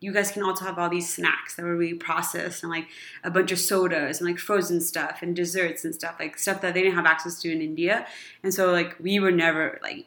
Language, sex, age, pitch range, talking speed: English, female, 20-39, 165-190 Hz, 255 wpm